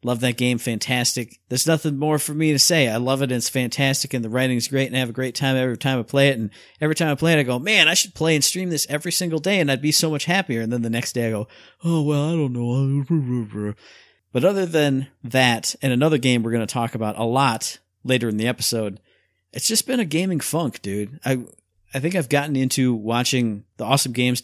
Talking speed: 255 wpm